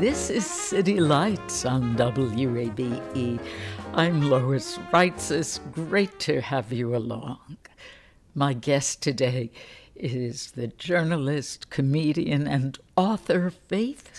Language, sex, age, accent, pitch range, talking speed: English, female, 60-79, American, 130-160 Hz, 100 wpm